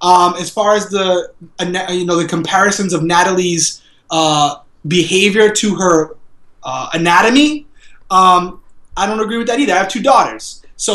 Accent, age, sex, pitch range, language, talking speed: American, 20-39, male, 165-210 Hz, English, 160 wpm